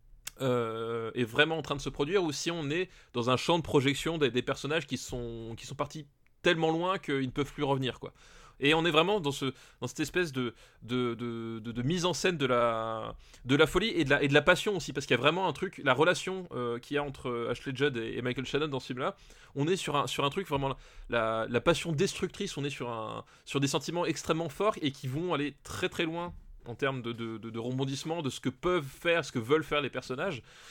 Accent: French